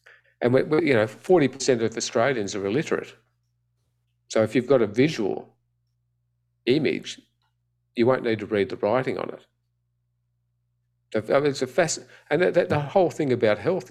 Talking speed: 165 wpm